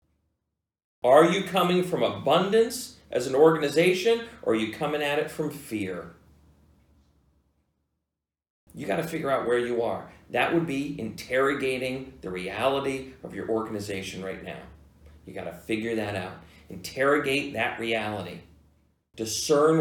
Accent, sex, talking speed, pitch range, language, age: American, male, 130 wpm, 80-135 Hz, English, 40-59